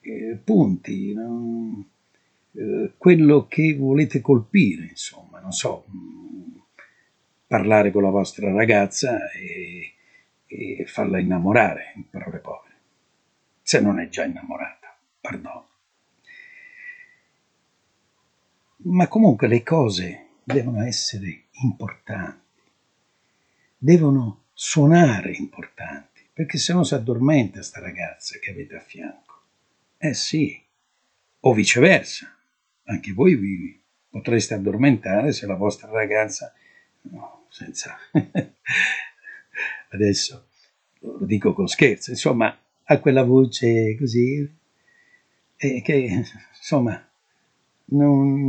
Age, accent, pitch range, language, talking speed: 60-79, native, 110-160 Hz, Italian, 95 wpm